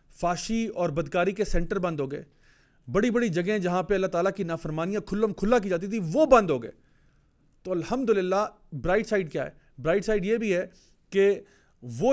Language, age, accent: English, 40-59, Indian